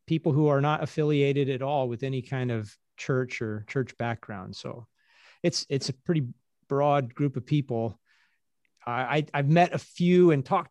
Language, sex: English, male